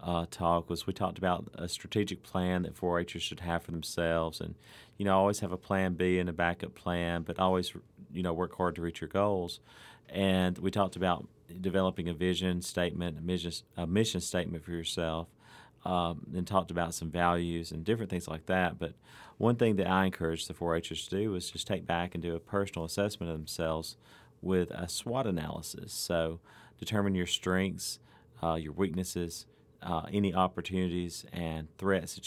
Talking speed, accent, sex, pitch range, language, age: 185 wpm, American, male, 85-95 Hz, English, 40-59